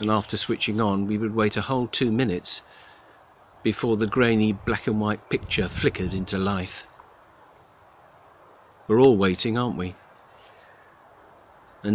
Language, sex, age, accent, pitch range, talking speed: English, male, 50-69, British, 90-110 Hz, 125 wpm